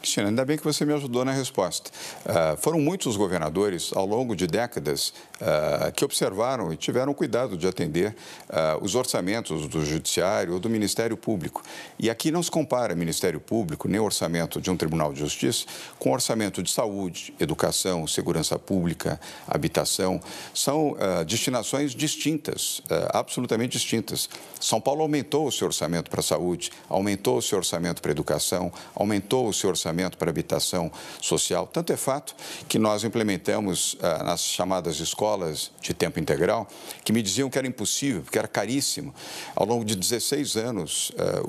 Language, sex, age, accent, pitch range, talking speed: Portuguese, male, 50-69, Brazilian, 90-125 Hz, 160 wpm